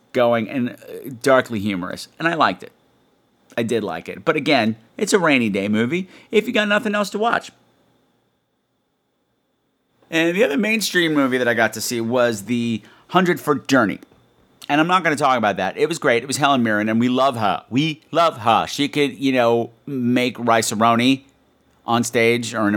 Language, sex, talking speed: English, male, 195 wpm